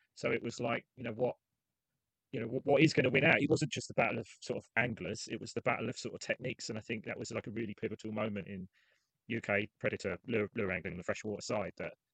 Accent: British